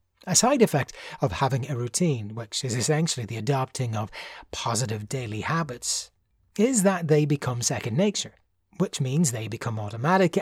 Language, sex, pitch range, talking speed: English, male, 115-160 Hz, 155 wpm